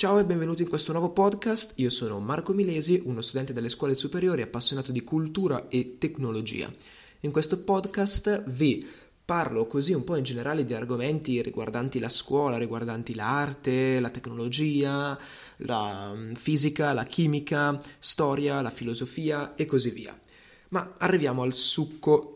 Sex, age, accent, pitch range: male, 20-39, native, 120-150 Hz